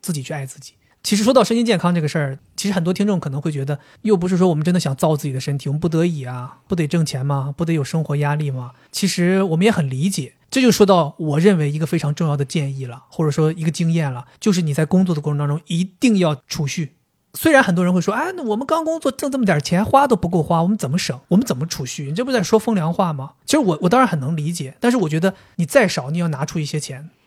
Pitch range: 155-205 Hz